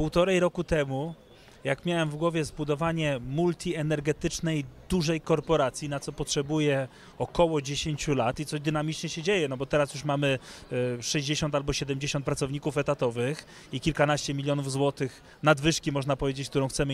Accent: native